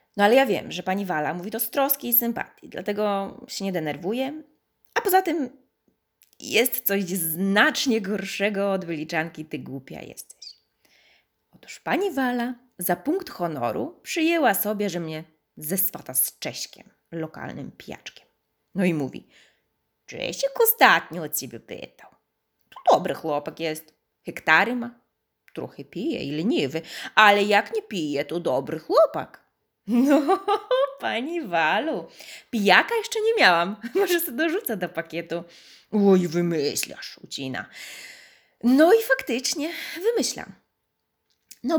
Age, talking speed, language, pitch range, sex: 20-39, 130 wpm, Polish, 165-245 Hz, female